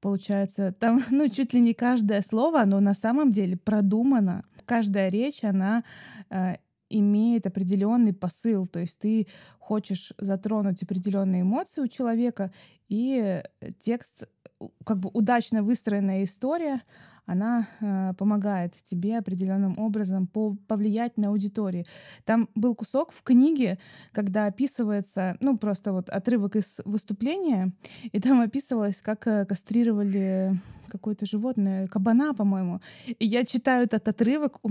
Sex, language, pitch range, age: female, Russian, 200-235 Hz, 20-39